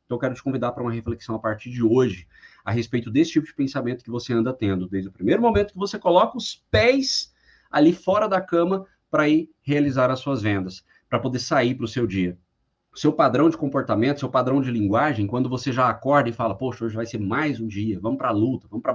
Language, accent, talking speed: Portuguese, Brazilian, 240 wpm